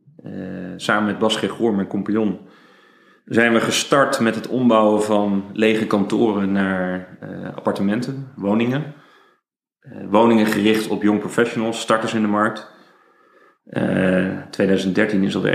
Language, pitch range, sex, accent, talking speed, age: Dutch, 100-110 Hz, male, Dutch, 130 wpm, 40-59